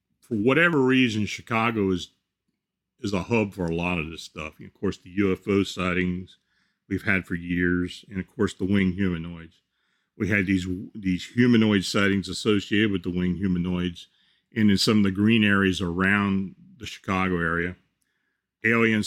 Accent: American